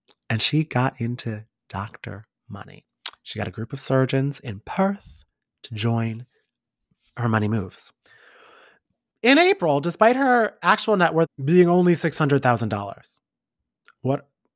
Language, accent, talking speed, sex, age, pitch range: English, American, 125 wpm, male, 30-49, 120-170 Hz